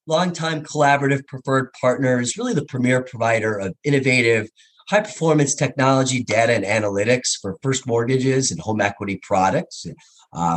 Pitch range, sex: 100-135 Hz, male